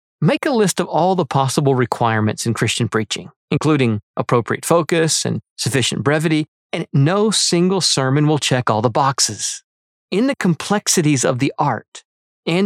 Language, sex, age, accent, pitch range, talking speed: English, male, 40-59, American, 120-175 Hz, 155 wpm